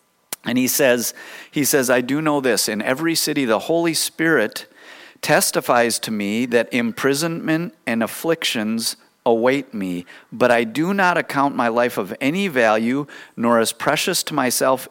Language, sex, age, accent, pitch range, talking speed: English, male, 50-69, American, 110-140 Hz, 155 wpm